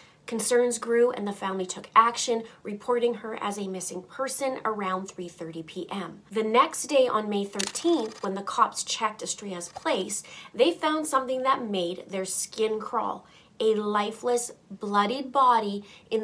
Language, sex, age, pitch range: English, female, 30-49, 195-245 Hz